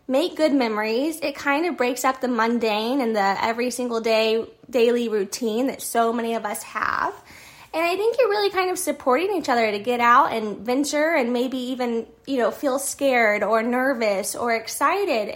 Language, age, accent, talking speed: English, 10-29, American, 190 wpm